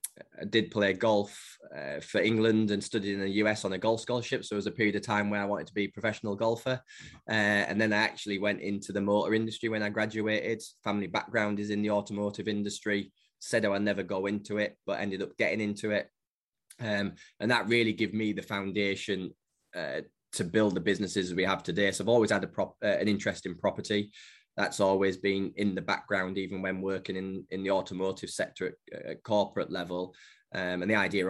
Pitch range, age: 95-110 Hz, 10-29